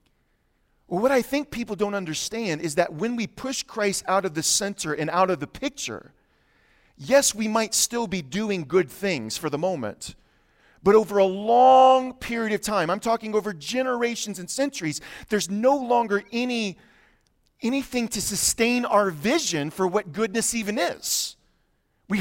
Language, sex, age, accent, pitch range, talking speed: English, male, 40-59, American, 180-235 Hz, 160 wpm